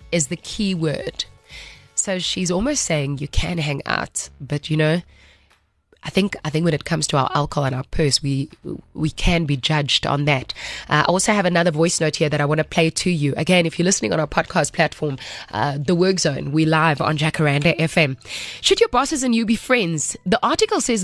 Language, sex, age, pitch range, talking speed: English, female, 20-39, 150-195 Hz, 220 wpm